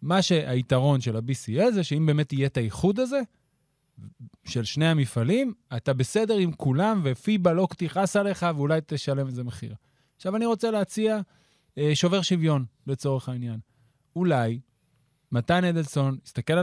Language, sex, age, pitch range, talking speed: Hebrew, male, 30-49, 125-165 Hz, 140 wpm